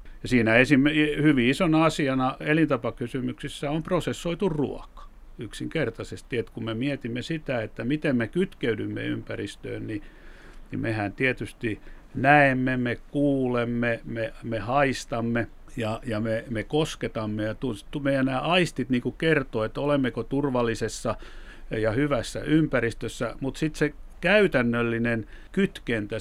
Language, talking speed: Finnish, 120 wpm